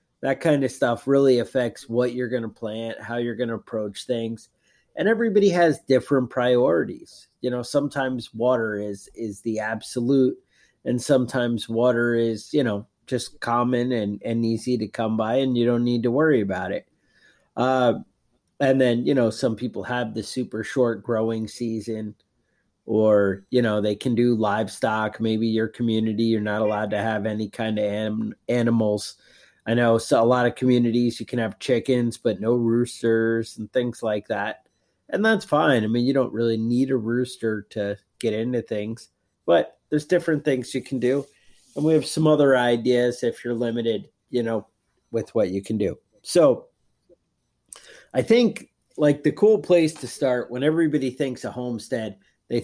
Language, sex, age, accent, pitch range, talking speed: English, male, 30-49, American, 110-130 Hz, 180 wpm